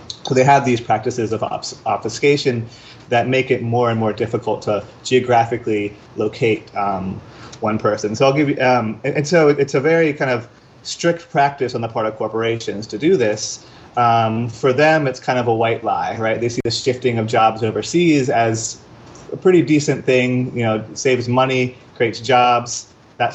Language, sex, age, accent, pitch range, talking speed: English, male, 30-49, American, 115-140 Hz, 185 wpm